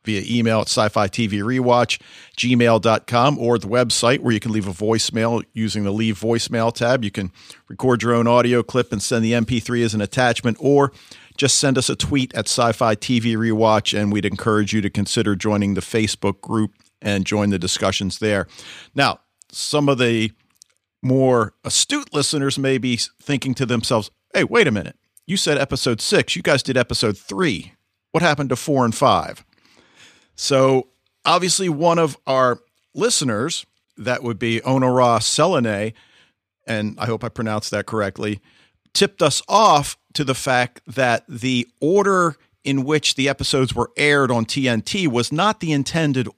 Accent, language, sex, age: American, English, male, 50-69